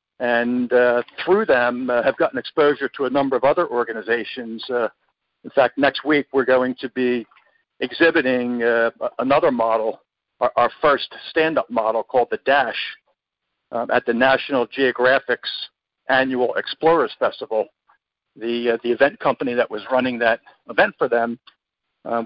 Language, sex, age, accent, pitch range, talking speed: English, male, 50-69, American, 120-140 Hz, 150 wpm